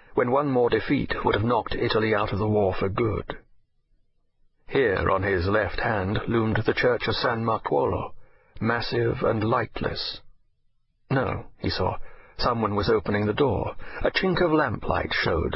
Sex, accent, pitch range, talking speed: male, British, 105-125 Hz, 160 wpm